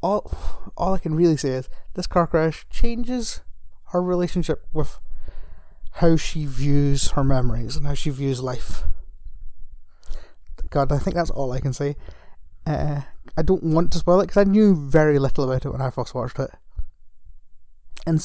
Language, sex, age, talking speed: English, male, 30-49, 170 wpm